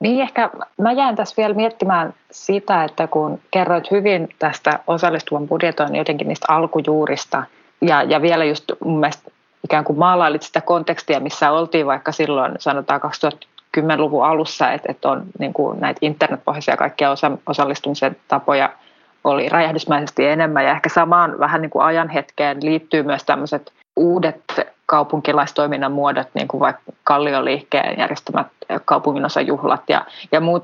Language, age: Finnish, 30-49